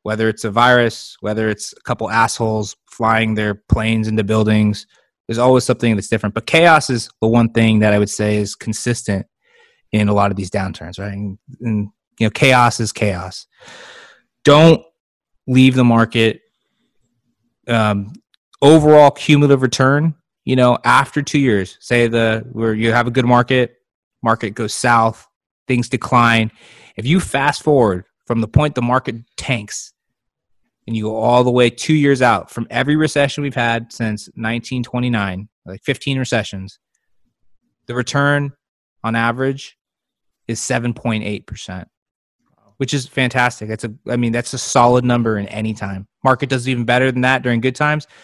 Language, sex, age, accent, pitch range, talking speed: English, male, 30-49, American, 110-130 Hz, 160 wpm